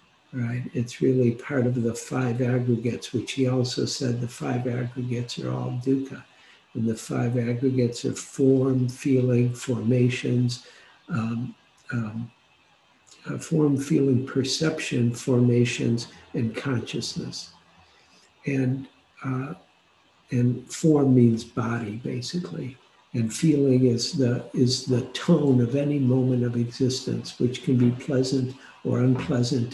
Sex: male